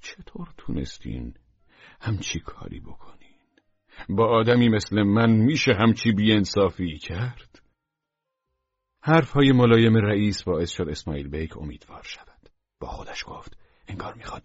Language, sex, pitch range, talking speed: Persian, male, 90-125 Hz, 115 wpm